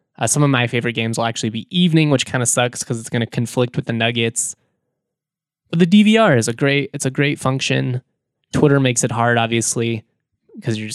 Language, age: English, 20-39